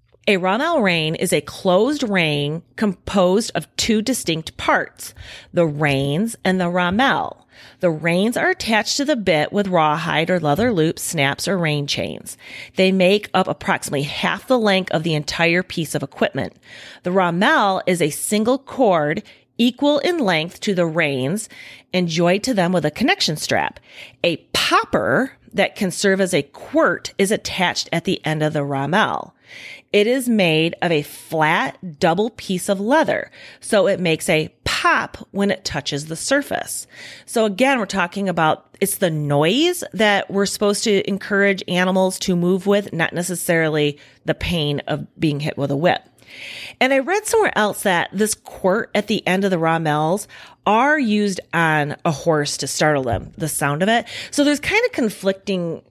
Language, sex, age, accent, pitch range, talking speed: English, female, 30-49, American, 160-210 Hz, 170 wpm